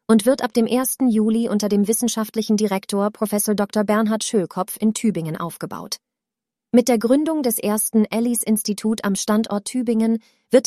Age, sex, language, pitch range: 30-49, female, German, 210-235 Hz